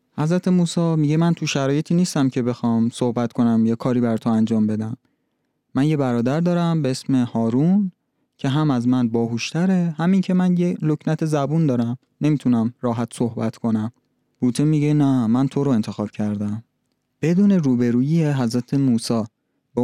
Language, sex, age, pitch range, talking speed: Persian, male, 30-49, 120-150 Hz, 160 wpm